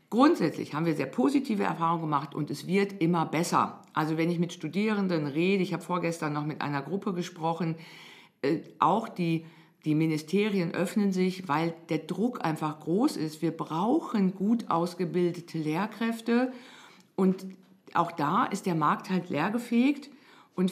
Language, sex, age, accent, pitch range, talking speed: German, female, 50-69, German, 165-205 Hz, 155 wpm